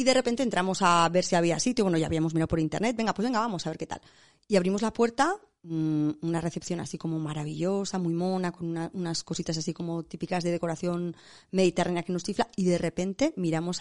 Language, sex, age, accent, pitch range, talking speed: Spanish, female, 30-49, Spanish, 170-210 Hz, 215 wpm